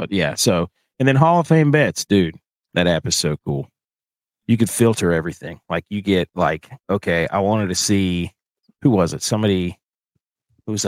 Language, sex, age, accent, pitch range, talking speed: English, male, 40-59, American, 90-115 Hz, 180 wpm